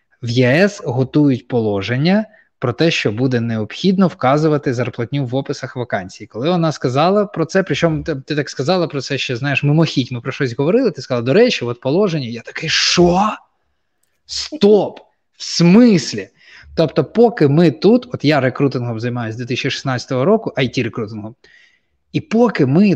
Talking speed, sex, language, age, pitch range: 150 wpm, male, Ukrainian, 20-39, 125-160 Hz